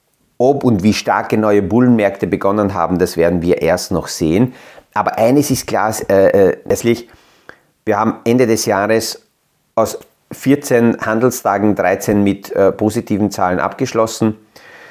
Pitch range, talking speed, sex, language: 95-115 Hz, 135 wpm, male, German